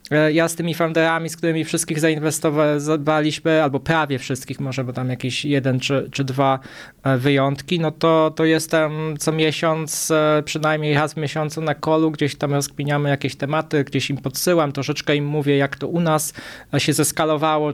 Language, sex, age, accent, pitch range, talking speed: Polish, male, 20-39, native, 150-170 Hz, 165 wpm